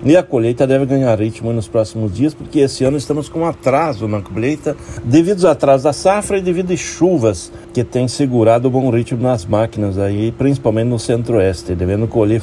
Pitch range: 105-135 Hz